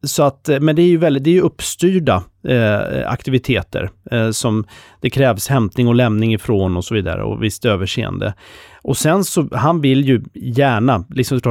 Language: Swedish